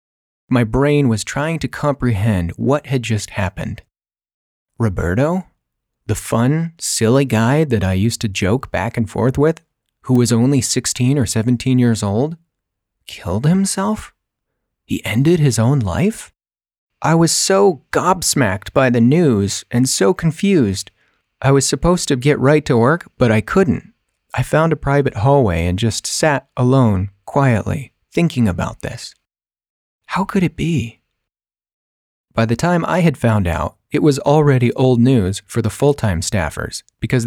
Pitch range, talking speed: 110-145 Hz, 150 wpm